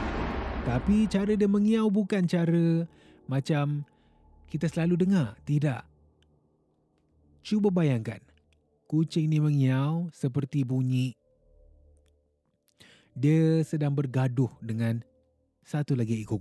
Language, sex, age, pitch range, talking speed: Malay, male, 20-39, 95-140 Hz, 90 wpm